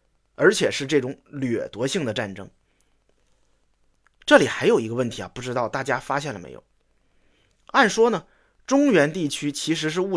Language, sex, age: Chinese, male, 30-49